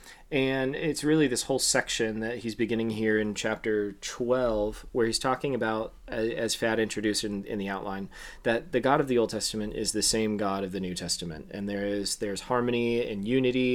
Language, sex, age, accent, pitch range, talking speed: English, male, 20-39, American, 105-125 Hz, 200 wpm